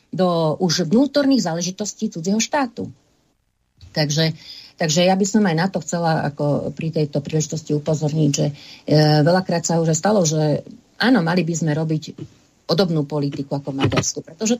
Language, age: Slovak, 40-59